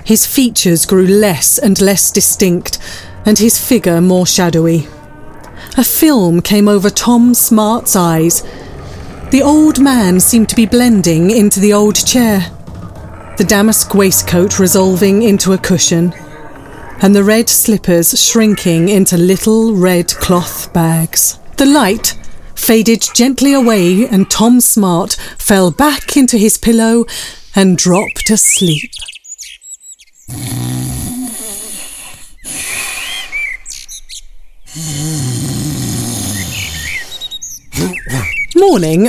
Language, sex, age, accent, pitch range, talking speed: English, female, 40-59, British, 170-225 Hz, 100 wpm